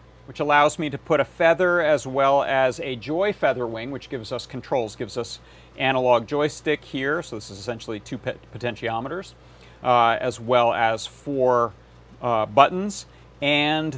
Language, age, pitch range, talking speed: English, 40-59, 115-140 Hz, 160 wpm